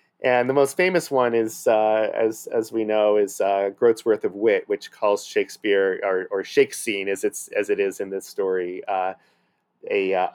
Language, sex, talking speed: English, male, 195 wpm